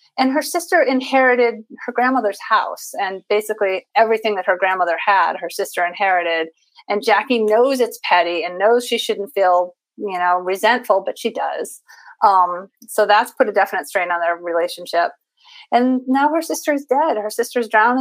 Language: English